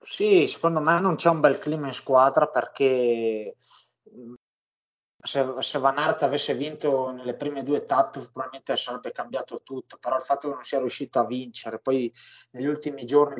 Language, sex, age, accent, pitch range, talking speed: Italian, male, 20-39, native, 120-145 Hz, 165 wpm